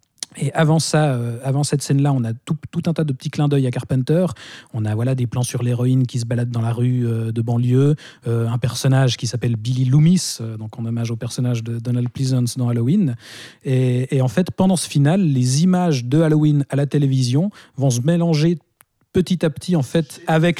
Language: French